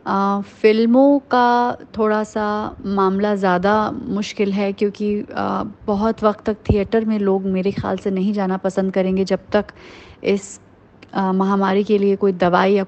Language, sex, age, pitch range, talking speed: English, female, 30-49, 190-215 Hz, 145 wpm